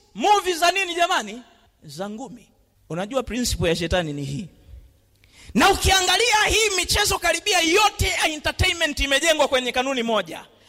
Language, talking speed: Swahili, 130 wpm